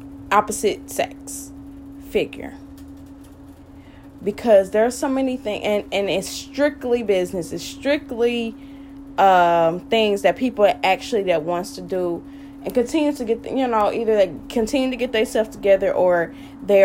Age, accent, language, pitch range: 20-39, American, English, 190-280 Hz